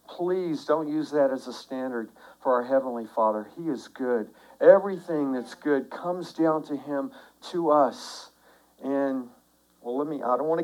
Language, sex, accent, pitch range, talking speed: English, male, American, 125-180 Hz, 175 wpm